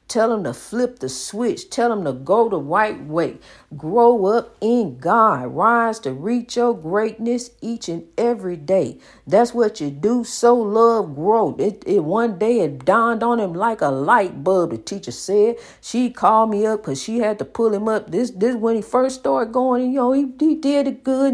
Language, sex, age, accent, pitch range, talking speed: English, female, 50-69, American, 205-250 Hz, 205 wpm